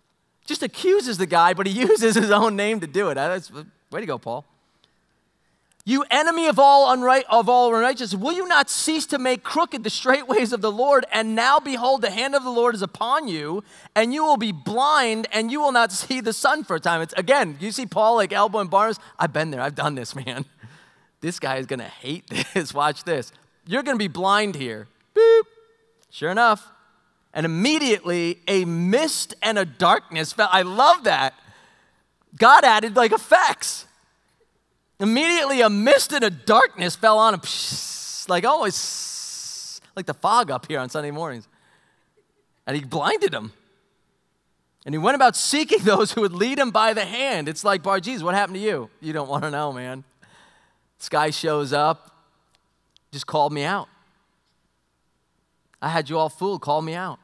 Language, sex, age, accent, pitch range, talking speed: English, male, 30-49, American, 160-250 Hz, 185 wpm